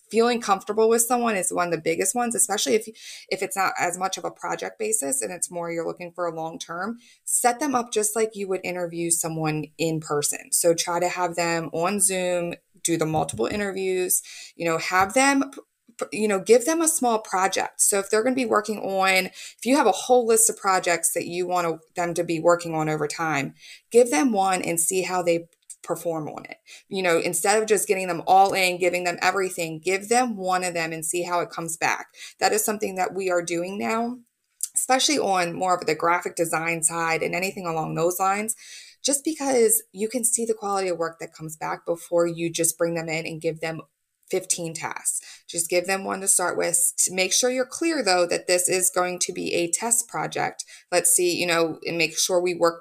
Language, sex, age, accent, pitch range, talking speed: English, female, 20-39, American, 170-220 Hz, 225 wpm